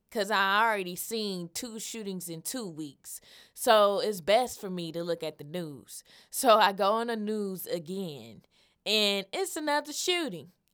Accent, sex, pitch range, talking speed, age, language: American, female, 175-220 Hz, 170 wpm, 20-39, English